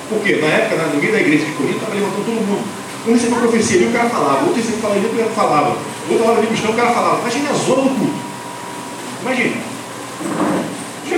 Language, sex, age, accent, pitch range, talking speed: Portuguese, male, 40-59, Brazilian, 170-230 Hz, 225 wpm